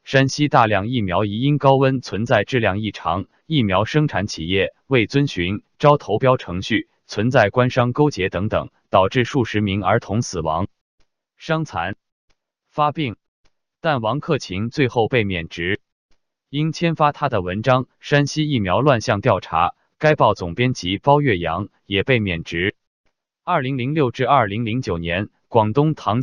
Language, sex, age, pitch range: Chinese, male, 20-39, 105-140 Hz